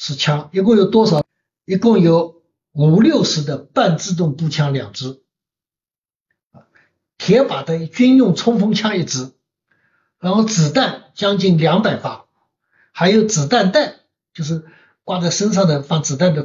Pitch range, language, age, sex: 140-195 Hz, Chinese, 60-79, male